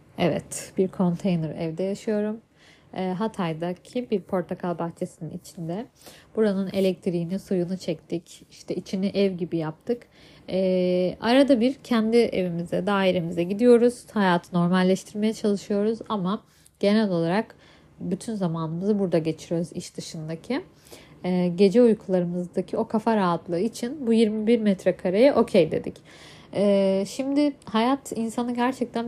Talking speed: 120 wpm